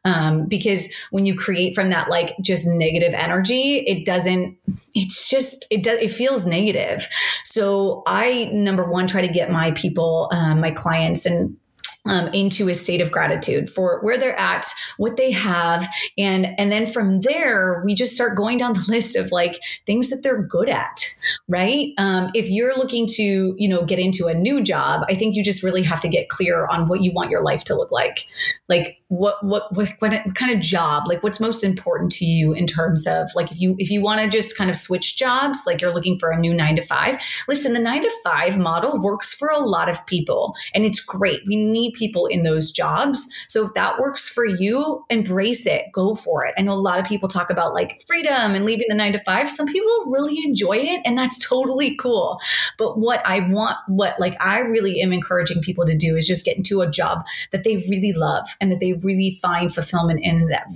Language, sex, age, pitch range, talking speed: English, female, 30-49, 175-225 Hz, 220 wpm